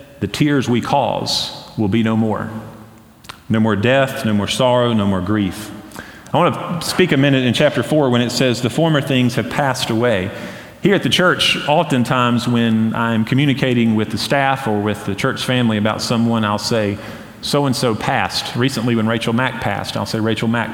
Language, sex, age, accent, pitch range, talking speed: English, male, 40-59, American, 110-135 Hz, 190 wpm